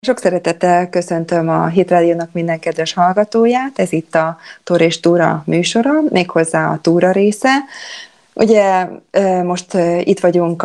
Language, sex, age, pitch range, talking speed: Hungarian, female, 30-49, 155-190 Hz, 135 wpm